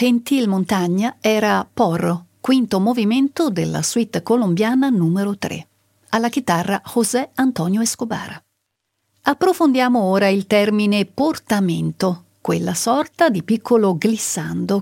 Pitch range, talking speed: 190-250 Hz, 105 wpm